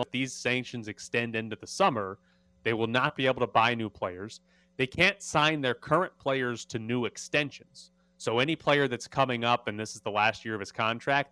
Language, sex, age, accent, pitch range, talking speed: English, male, 30-49, American, 110-155 Hz, 205 wpm